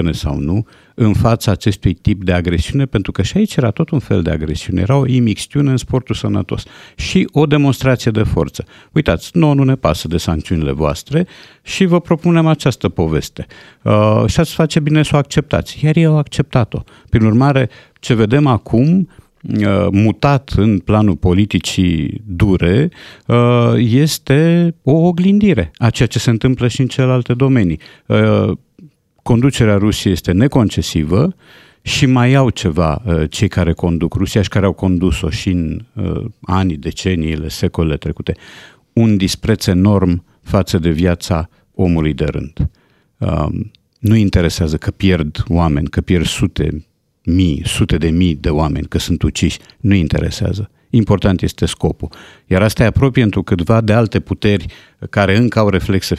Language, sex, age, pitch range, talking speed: Romanian, male, 50-69, 90-125 Hz, 155 wpm